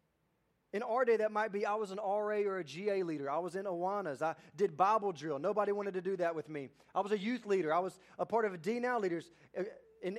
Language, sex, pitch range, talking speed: English, male, 180-230 Hz, 255 wpm